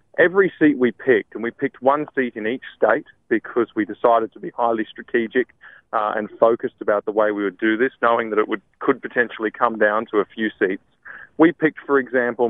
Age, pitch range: 30-49, 115-145 Hz